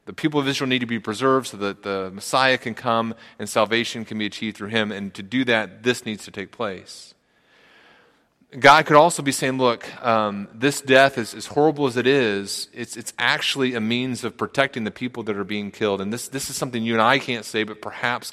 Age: 30-49